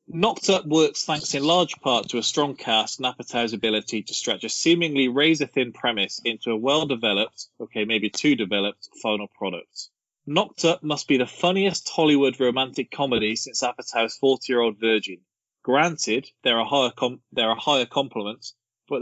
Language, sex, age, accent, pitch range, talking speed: English, male, 20-39, British, 110-145 Hz, 155 wpm